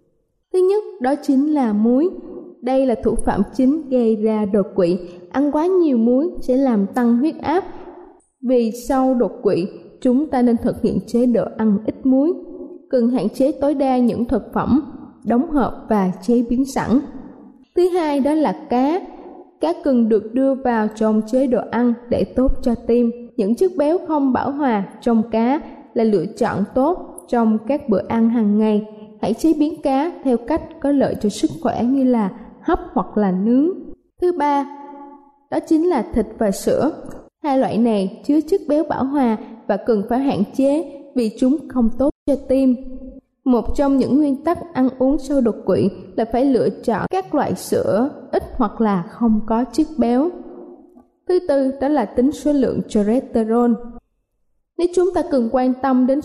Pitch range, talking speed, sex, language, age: 230-290 Hz, 180 wpm, female, Vietnamese, 20-39